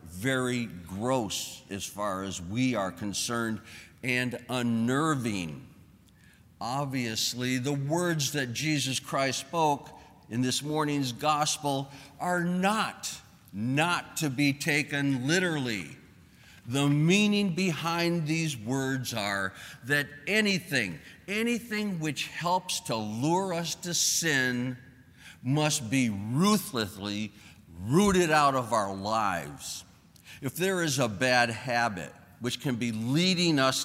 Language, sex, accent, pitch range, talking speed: English, male, American, 115-155 Hz, 110 wpm